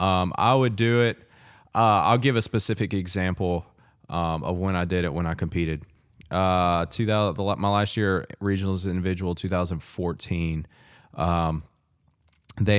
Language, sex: English, male